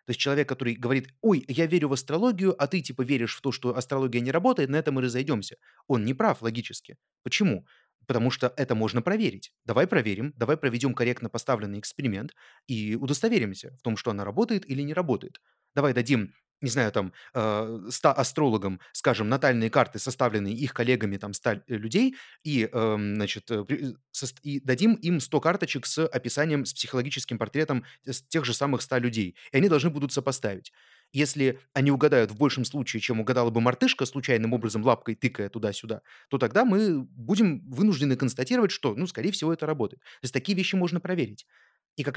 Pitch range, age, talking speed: 115-150 Hz, 30-49, 175 wpm